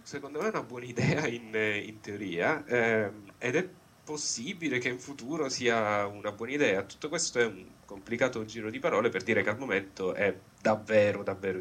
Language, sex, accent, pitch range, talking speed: Italian, male, native, 100-125 Hz, 185 wpm